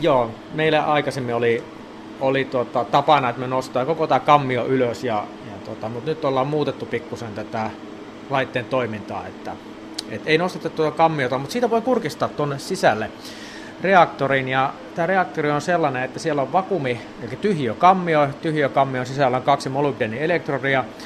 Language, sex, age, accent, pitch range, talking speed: Finnish, male, 30-49, native, 125-150 Hz, 160 wpm